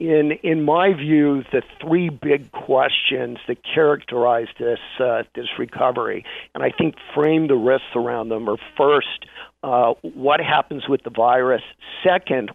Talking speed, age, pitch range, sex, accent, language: 150 wpm, 50-69, 130-160 Hz, male, American, English